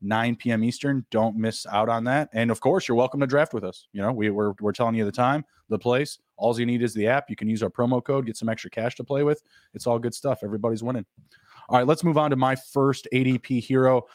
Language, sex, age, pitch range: English, male, 20-39, 110-140 Hz